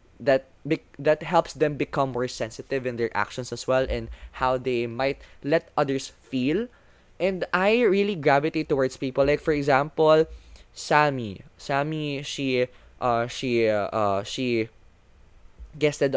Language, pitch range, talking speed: Filipino, 115-150 Hz, 140 wpm